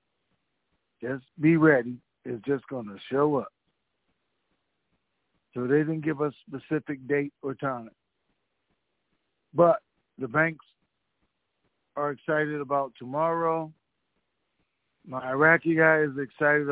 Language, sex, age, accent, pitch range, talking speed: English, male, 60-79, American, 140-170 Hz, 110 wpm